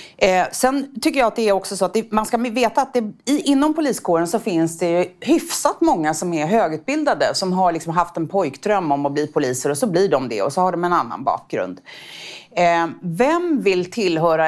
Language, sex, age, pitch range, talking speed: Swedish, female, 30-49, 165-230 Hz, 205 wpm